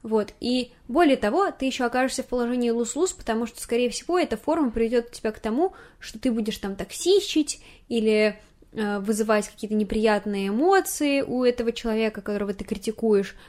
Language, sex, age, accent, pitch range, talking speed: Russian, female, 10-29, native, 205-255 Hz, 165 wpm